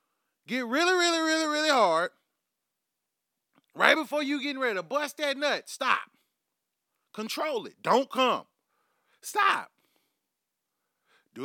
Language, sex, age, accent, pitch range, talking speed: English, male, 30-49, American, 180-245 Hz, 115 wpm